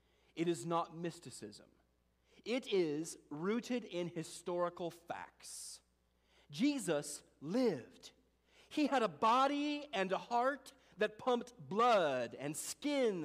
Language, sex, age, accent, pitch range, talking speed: English, male, 40-59, American, 160-270 Hz, 110 wpm